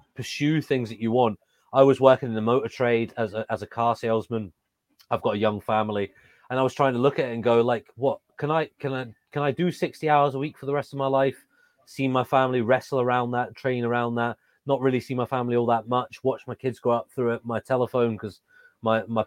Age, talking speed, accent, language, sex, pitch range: 30-49, 245 wpm, British, English, male, 110-125 Hz